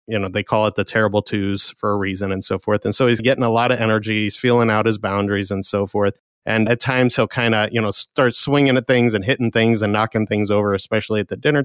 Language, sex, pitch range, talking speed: English, male, 105-125 Hz, 275 wpm